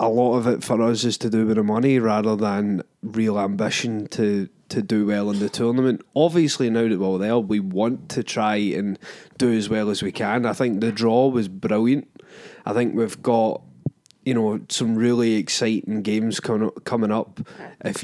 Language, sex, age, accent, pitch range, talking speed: English, male, 20-39, British, 110-135 Hz, 200 wpm